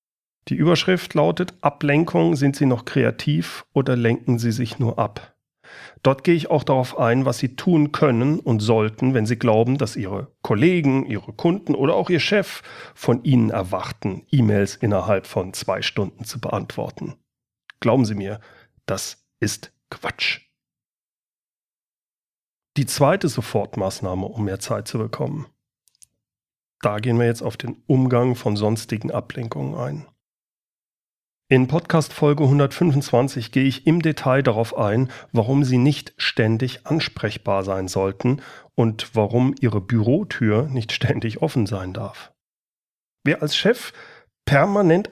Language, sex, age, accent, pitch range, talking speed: German, male, 40-59, German, 115-150 Hz, 135 wpm